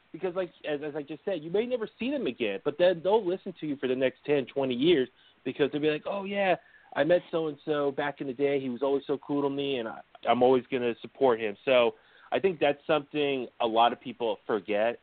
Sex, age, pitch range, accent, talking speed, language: male, 30-49, 120-155 Hz, American, 250 wpm, English